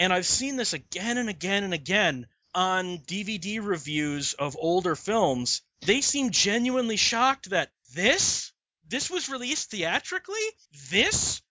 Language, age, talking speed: English, 30-49, 135 wpm